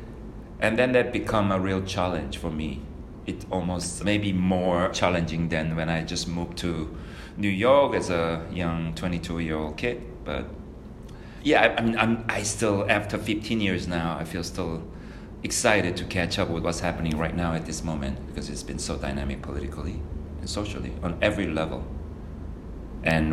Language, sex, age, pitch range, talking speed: English, male, 40-59, 80-120 Hz, 165 wpm